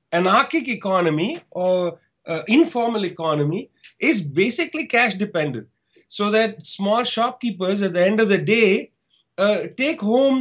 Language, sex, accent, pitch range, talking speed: English, male, Indian, 180-235 Hz, 135 wpm